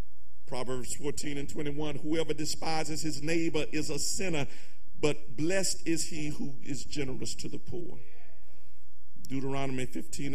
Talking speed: 135 wpm